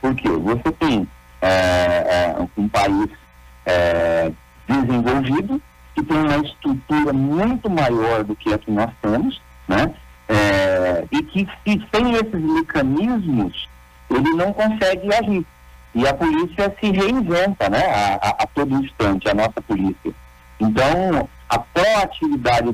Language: Portuguese